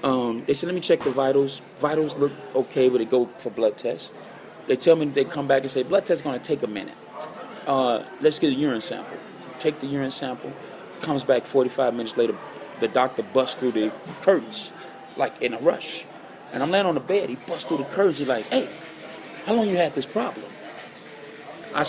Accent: American